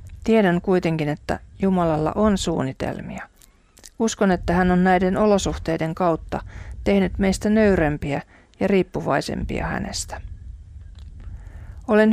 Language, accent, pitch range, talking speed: Finnish, native, 145-185 Hz, 100 wpm